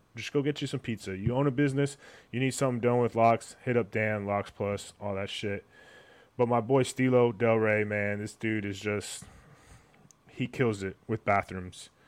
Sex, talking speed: male, 200 wpm